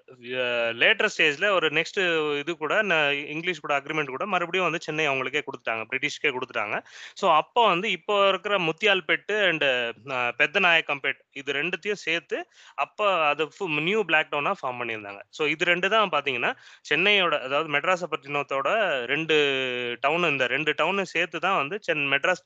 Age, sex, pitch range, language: 20-39, male, 140-185 Hz, Tamil